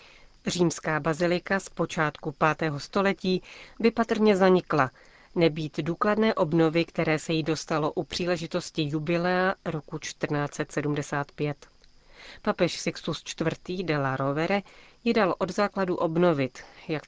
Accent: native